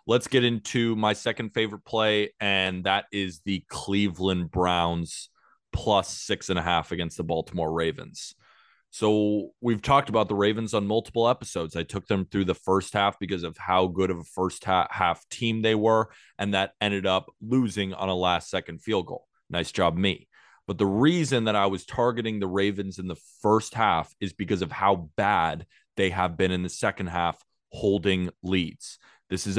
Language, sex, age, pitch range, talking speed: English, male, 20-39, 90-110 Hz, 185 wpm